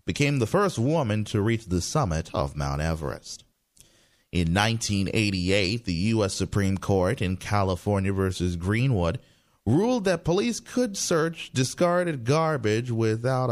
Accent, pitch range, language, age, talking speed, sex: American, 90-125 Hz, English, 30-49, 130 wpm, male